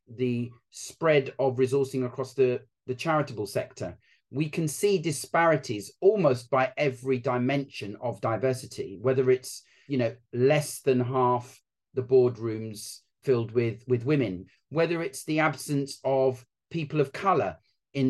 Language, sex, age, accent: English, male, 40-59, British